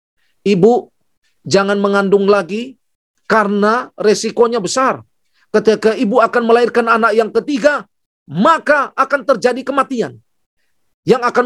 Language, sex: Indonesian, male